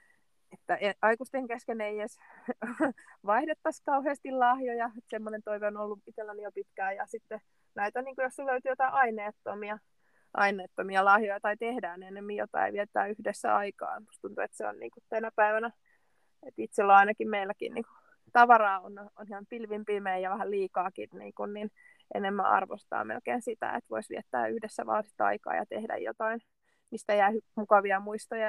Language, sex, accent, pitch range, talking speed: Finnish, female, native, 205-240 Hz, 150 wpm